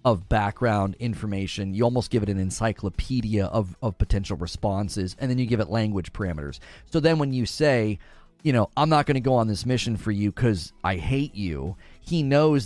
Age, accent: 30-49, American